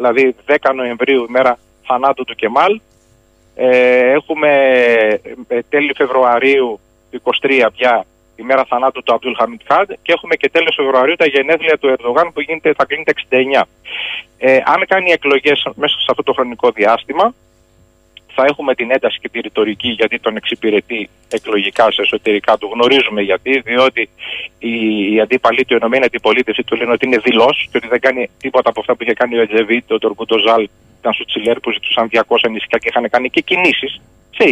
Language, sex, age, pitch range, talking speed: Greek, male, 30-49, 115-145 Hz, 175 wpm